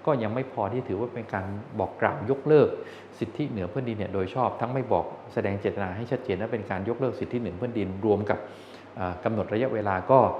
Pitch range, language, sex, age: 105-130 Hz, Thai, male, 20-39